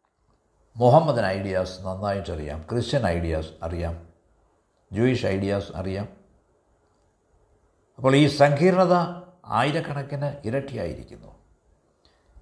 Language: Malayalam